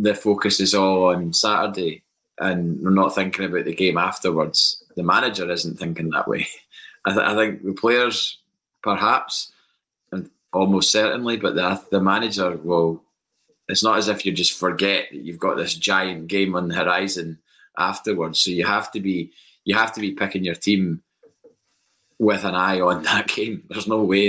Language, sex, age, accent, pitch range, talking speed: English, male, 20-39, British, 85-100 Hz, 180 wpm